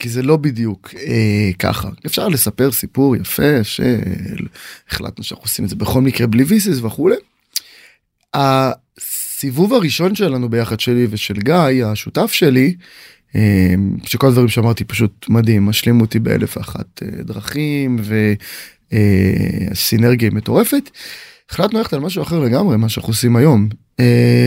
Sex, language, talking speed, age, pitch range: male, Hebrew, 130 wpm, 20-39, 110-140 Hz